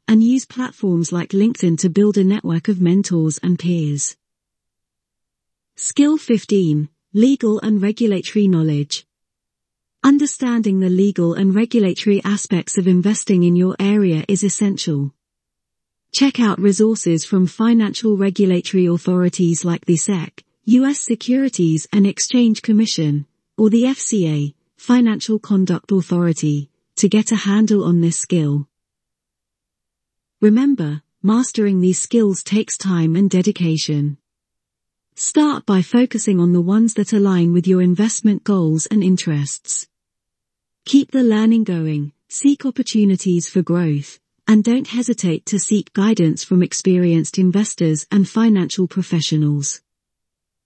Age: 40-59